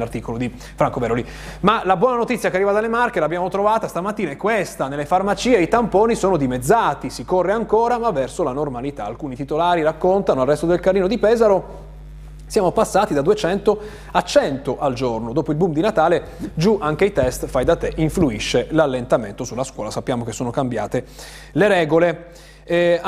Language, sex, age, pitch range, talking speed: Italian, male, 30-49, 140-195 Hz, 180 wpm